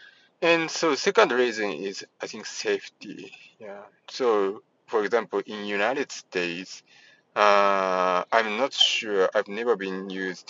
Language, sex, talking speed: English, male, 130 wpm